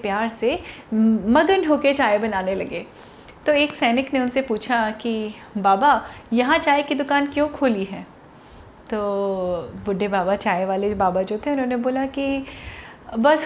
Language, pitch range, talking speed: Hindi, 215-270 Hz, 150 wpm